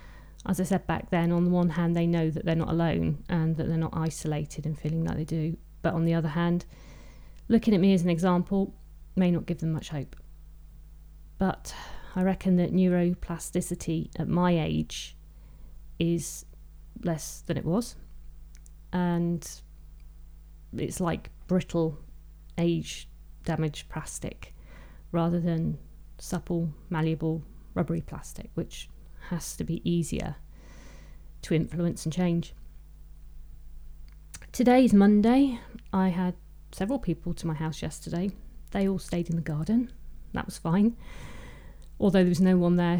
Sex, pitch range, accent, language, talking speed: female, 155-180 Hz, British, English, 140 wpm